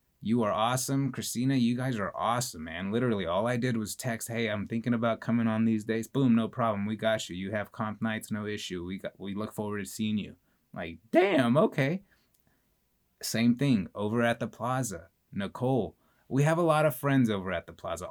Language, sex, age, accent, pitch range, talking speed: English, male, 20-39, American, 100-125 Hz, 210 wpm